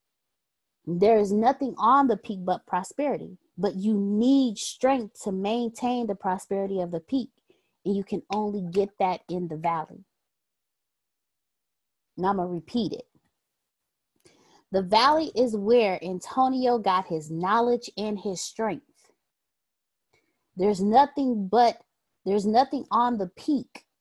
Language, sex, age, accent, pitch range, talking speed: English, female, 20-39, American, 195-265 Hz, 130 wpm